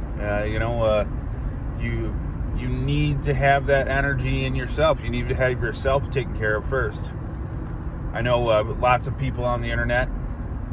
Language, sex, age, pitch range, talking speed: English, male, 30-49, 100-130 Hz, 175 wpm